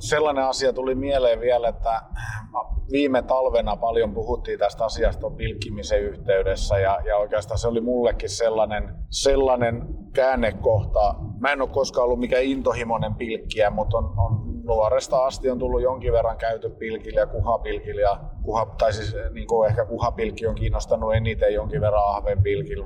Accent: native